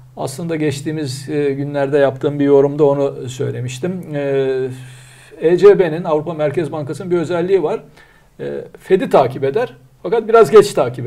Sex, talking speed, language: male, 130 wpm, Turkish